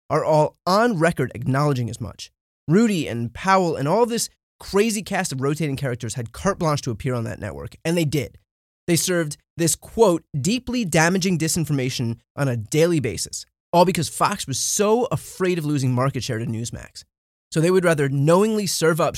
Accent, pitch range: American, 125-190 Hz